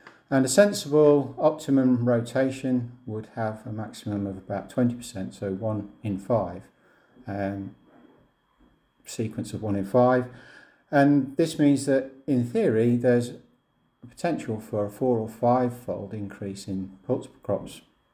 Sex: male